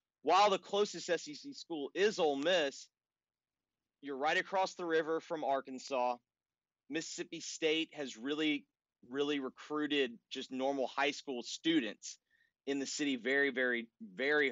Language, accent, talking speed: English, American, 130 wpm